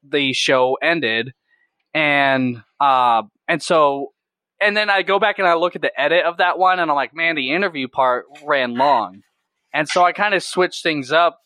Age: 20-39